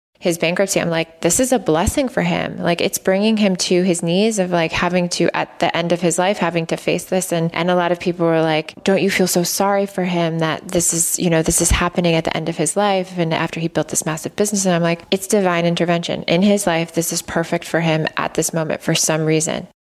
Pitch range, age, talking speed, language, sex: 160-180 Hz, 20-39, 260 wpm, English, female